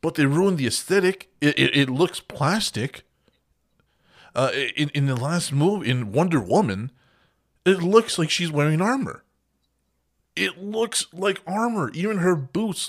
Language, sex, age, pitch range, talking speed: English, male, 20-39, 100-150 Hz, 150 wpm